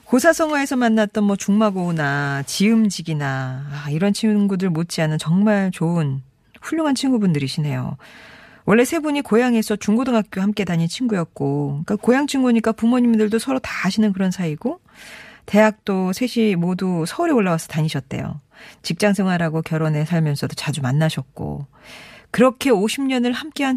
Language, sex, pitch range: Korean, female, 155-220 Hz